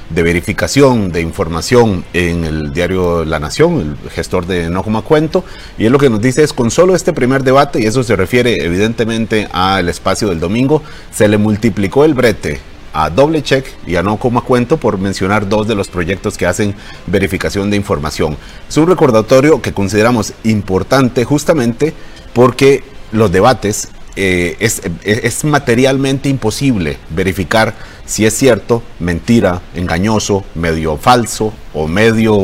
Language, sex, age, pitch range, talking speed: Spanish, male, 40-59, 90-125 Hz, 160 wpm